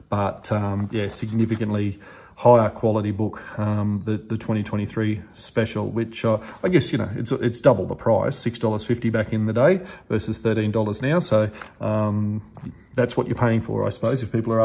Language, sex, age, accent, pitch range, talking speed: English, male, 40-59, Australian, 110-125 Hz, 175 wpm